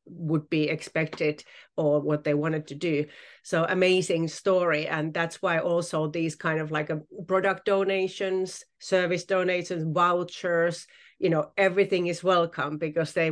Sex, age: female, 40-59